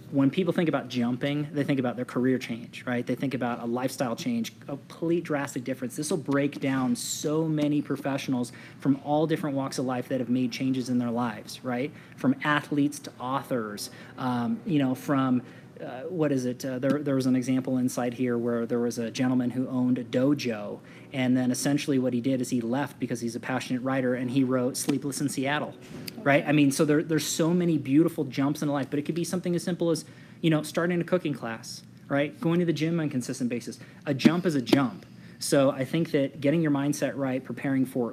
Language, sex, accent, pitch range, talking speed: English, male, American, 125-155 Hz, 225 wpm